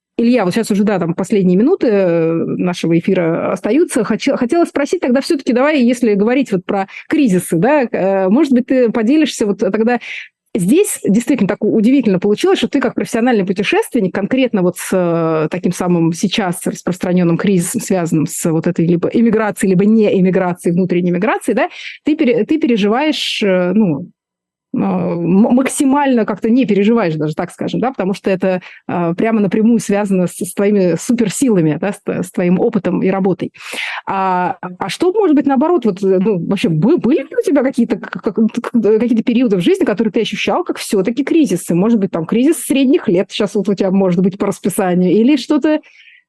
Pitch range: 190-245 Hz